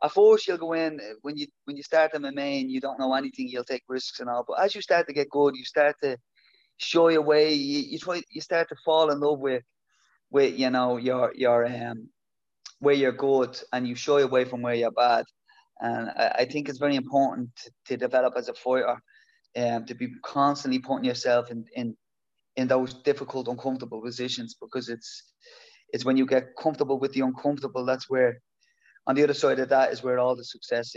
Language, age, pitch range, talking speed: Arabic, 20-39, 125-150 Hz, 215 wpm